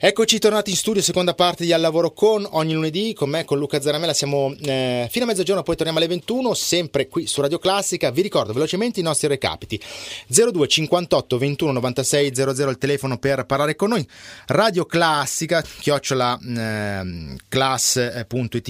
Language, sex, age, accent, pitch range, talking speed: Italian, male, 30-49, native, 125-170 Hz, 155 wpm